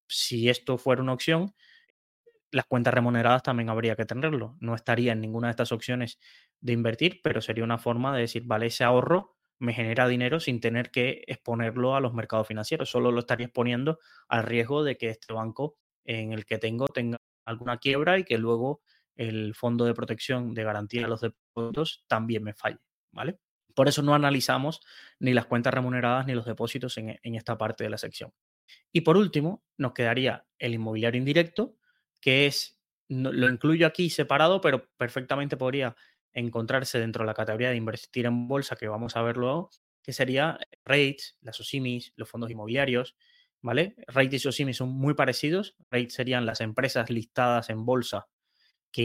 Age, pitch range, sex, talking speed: 20-39, 115-135 Hz, male, 180 wpm